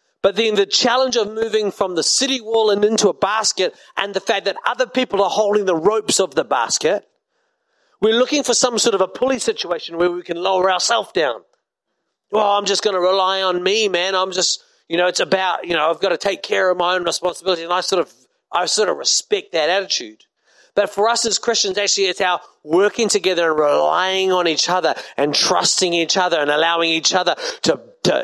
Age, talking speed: 40-59, 220 wpm